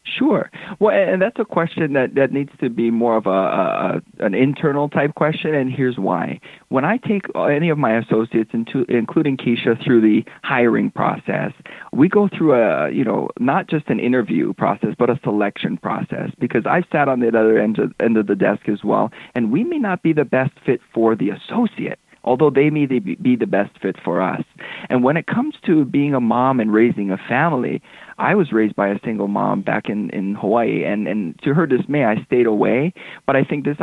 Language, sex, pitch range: English, male, 115-155 Hz